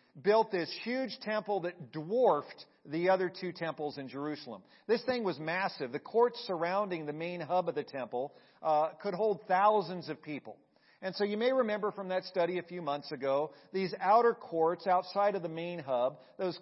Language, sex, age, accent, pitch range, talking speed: English, male, 40-59, American, 155-210 Hz, 190 wpm